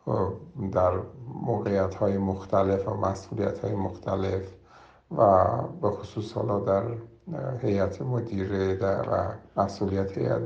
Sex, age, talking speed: male, 60-79, 100 wpm